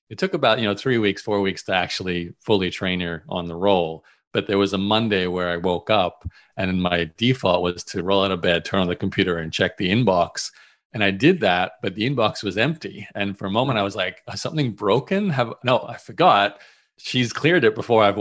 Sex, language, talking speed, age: male, English, 230 wpm, 40-59